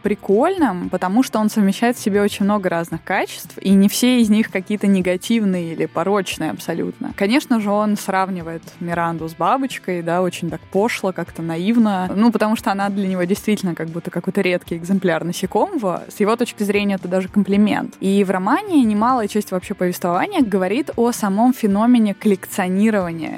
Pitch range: 180-220 Hz